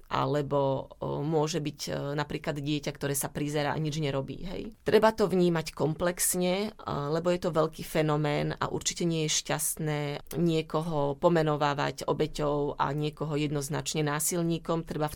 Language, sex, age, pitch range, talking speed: Slovak, female, 30-49, 145-170 Hz, 140 wpm